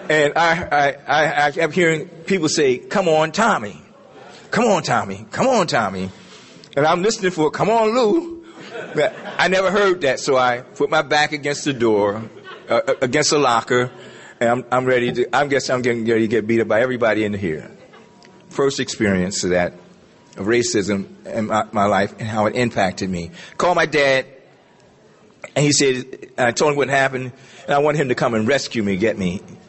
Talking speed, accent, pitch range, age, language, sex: 200 wpm, American, 115-175 Hz, 50-69, English, male